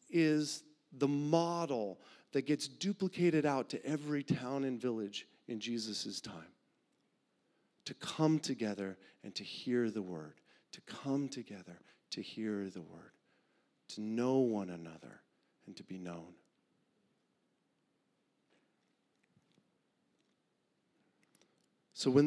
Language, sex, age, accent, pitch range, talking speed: English, male, 40-59, American, 95-140 Hz, 110 wpm